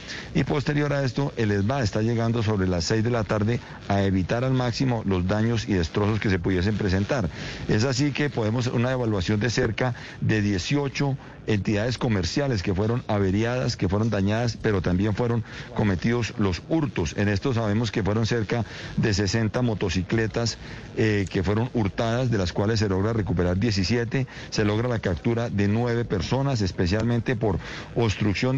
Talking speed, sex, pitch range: 170 wpm, male, 100-125 Hz